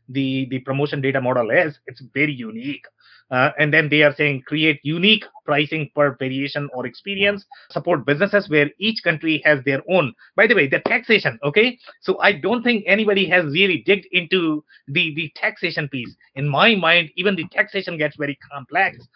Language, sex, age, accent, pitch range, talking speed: English, male, 30-49, Indian, 145-195 Hz, 180 wpm